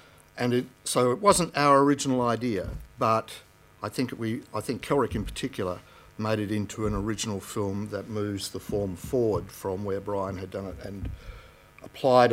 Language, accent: English, Australian